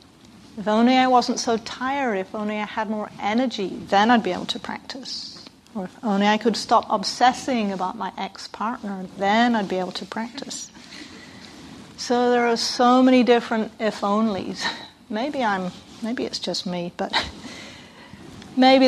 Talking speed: 160 wpm